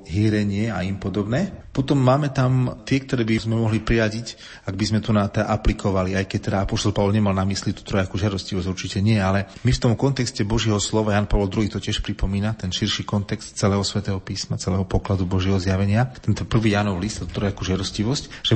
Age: 30-49